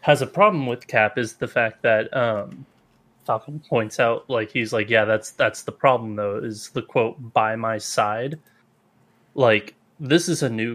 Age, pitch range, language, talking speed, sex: 20-39, 115-140 Hz, English, 185 wpm, male